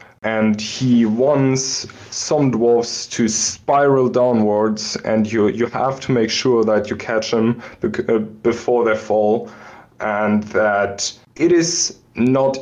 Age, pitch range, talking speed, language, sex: 20-39, 105-130 Hz, 130 wpm, English, male